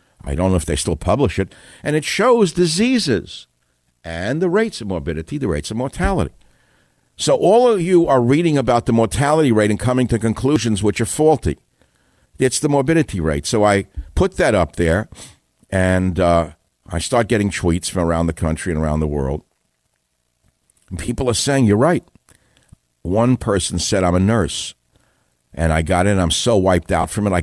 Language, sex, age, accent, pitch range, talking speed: English, male, 60-79, American, 85-115 Hz, 185 wpm